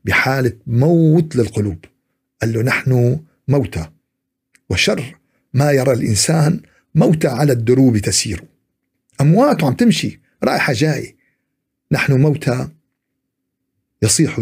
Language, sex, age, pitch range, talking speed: Arabic, male, 50-69, 105-140 Hz, 95 wpm